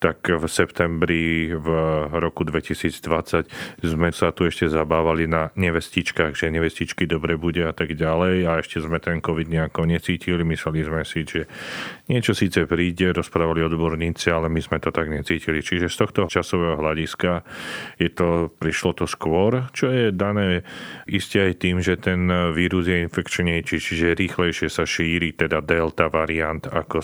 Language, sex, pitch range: Slovak, male, 80-95 Hz